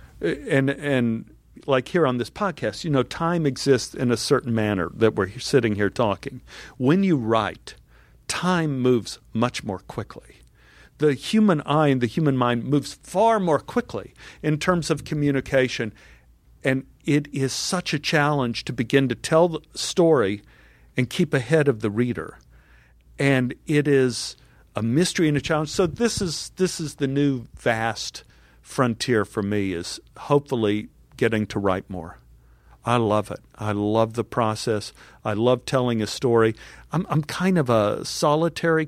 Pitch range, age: 105-140 Hz, 50-69